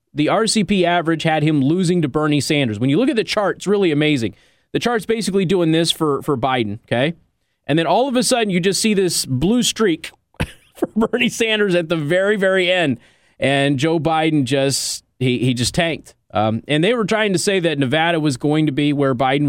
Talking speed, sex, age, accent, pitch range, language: 215 wpm, male, 30-49, American, 130-175 Hz, English